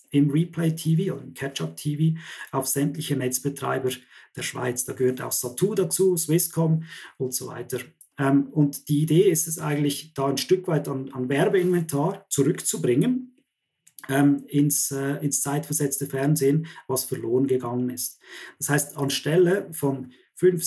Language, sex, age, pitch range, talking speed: German, male, 40-59, 130-155 Hz, 140 wpm